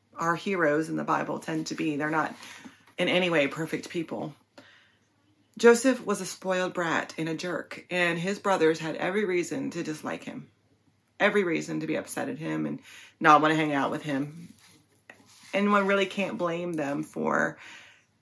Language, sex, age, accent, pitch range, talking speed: English, female, 30-49, American, 145-185 Hz, 180 wpm